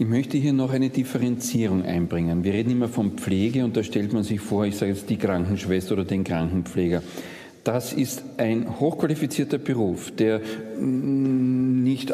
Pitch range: 110-145 Hz